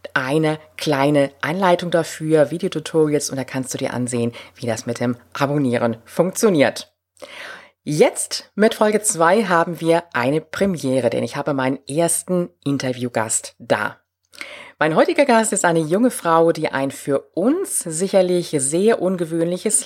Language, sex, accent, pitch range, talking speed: German, female, German, 140-195 Hz, 140 wpm